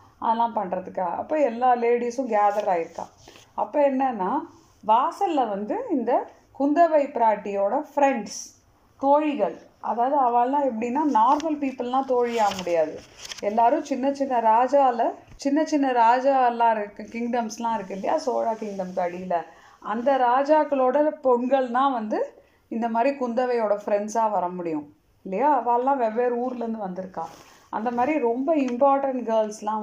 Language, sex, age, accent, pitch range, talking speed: Tamil, female, 30-49, native, 205-275 Hz, 115 wpm